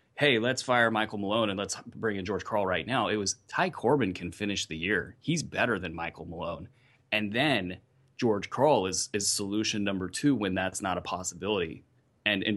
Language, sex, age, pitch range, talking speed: English, male, 30-49, 100-125 Hz, 200 wpm